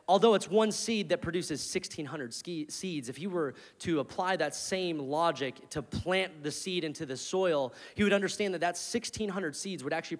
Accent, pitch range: American, 145-205 Hz